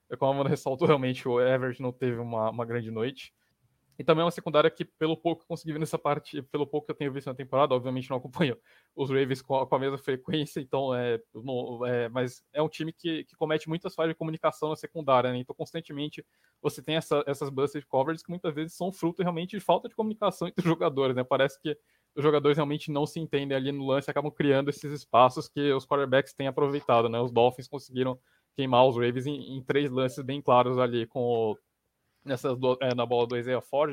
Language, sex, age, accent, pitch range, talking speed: English, male, 20-39, Brazilian, 130-155 Hz, 225 wpm